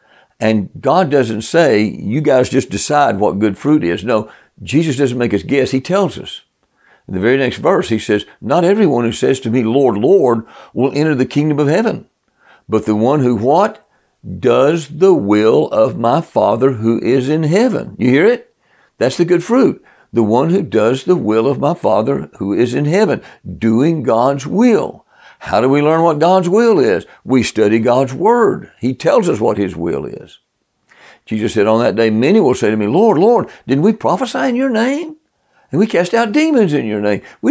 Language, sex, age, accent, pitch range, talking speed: English, male, 60-79, American, 110-165 Hz, 200 wpm